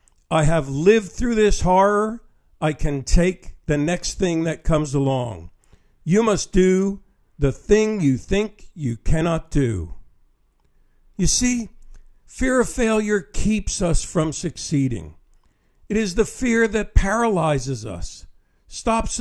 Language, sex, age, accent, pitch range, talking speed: English, male, 50-69, American, 145-215 Hz, 130 wpm